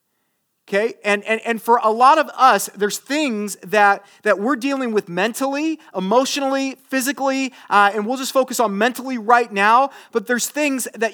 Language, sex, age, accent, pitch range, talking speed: English, male, 30-49, American, 185-255 Hz, 170 wpm